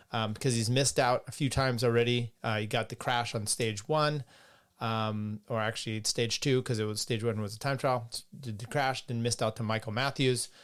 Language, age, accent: English, 30-49, American